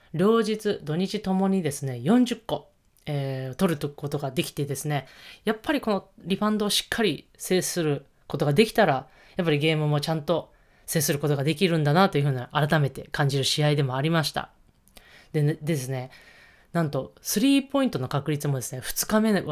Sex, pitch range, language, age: female, 140-185 Hz, Japanese, 20-39